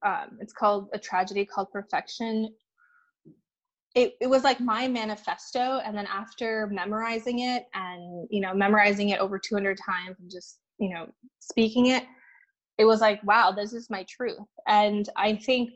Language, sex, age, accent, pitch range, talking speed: English, female, 20-39, American, 200-235 Hz, 165 wpm